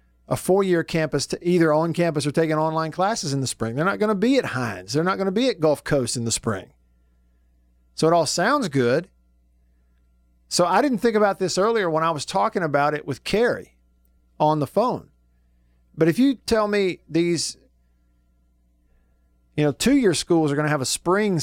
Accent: American